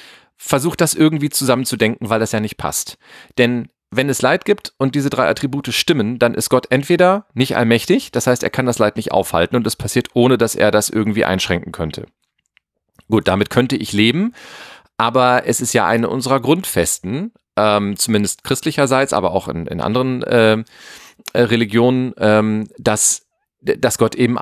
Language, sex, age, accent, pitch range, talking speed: German, male, 40-59, German, 105-130 Hz, 170 wpm